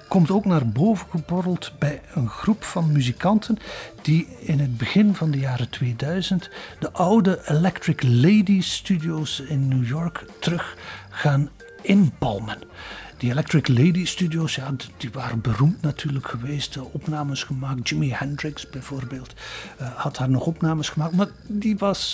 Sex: male